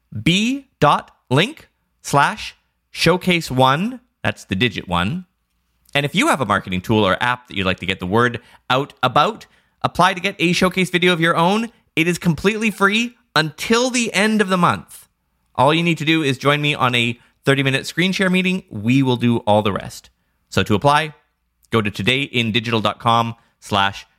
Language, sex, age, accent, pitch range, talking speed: English, male, 20-39, American, 95-150 Hz, 185 wpm